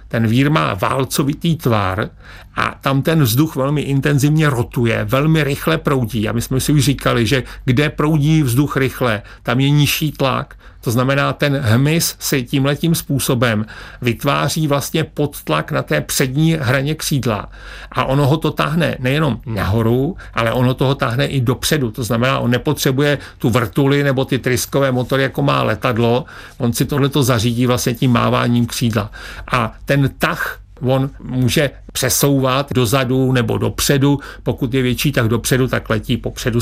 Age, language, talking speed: 50-69, Czech, 160 wpm